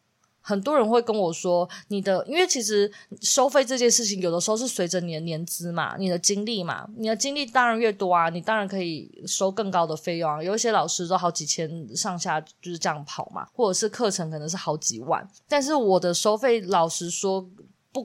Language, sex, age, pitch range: Chinese, female, 20-39, 175-225 Hz